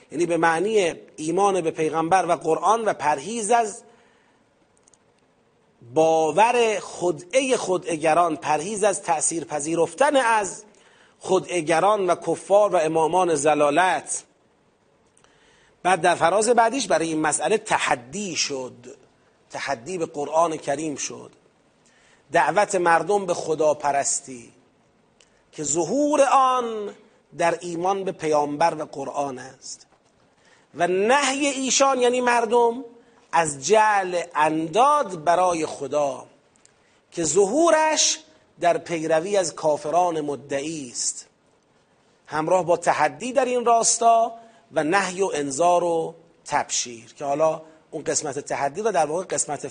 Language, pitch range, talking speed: Persian, 155-230 Hz, 110 wpm